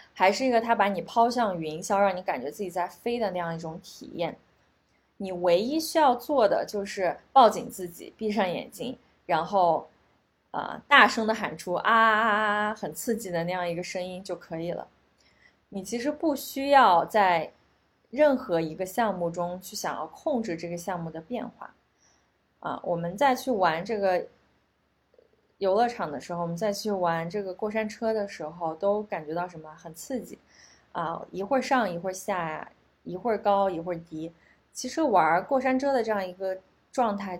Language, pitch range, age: Chinese, 170-230 Hz, 20-39